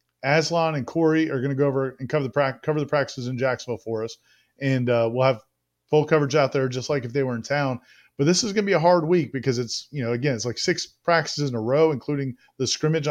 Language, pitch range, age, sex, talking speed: English, 135-160 Hz, 30-49, male, 265 wpm